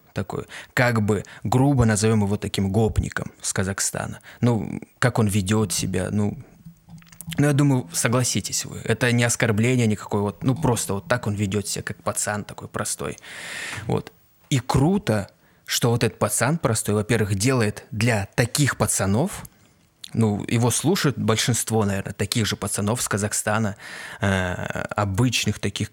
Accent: native